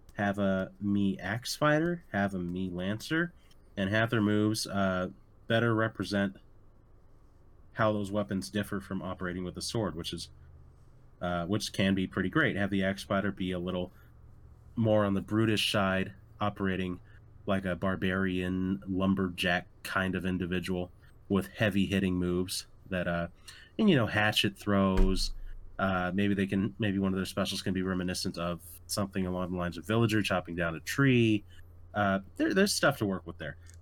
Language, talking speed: English, 170 wpm